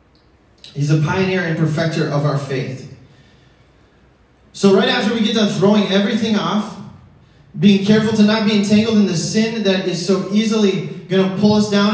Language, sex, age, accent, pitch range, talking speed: English, male, 20-39, American, 165-215 Hz, 175 wpm